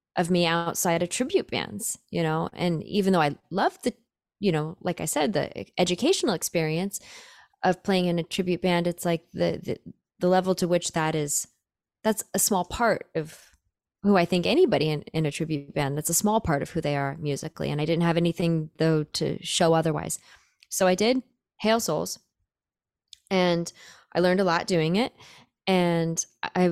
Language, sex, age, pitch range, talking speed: English, female, 20-39, 160-195 Hz, 190 wpm